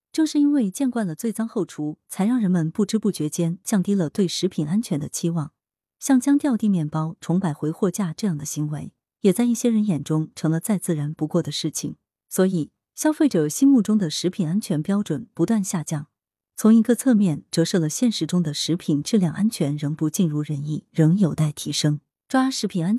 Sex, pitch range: female, 155-225 Hz